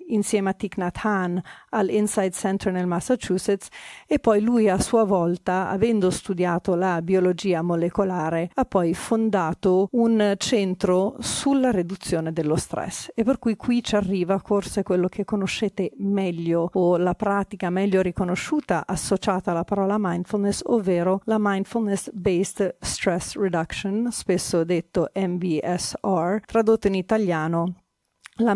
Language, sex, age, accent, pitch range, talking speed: Italian, female, 40-59, native, 180-215 Hz, 130 wpm